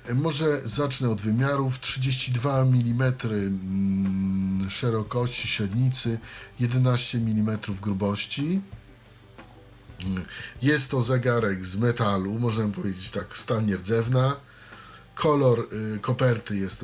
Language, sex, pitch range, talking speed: Polish, male, 105-125 Hz, 85 wpm